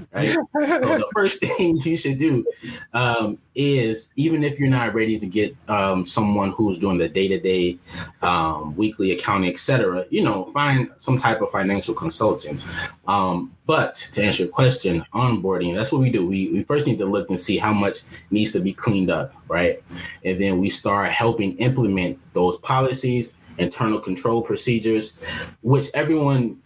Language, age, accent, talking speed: English, 20-39, American, 175 wpm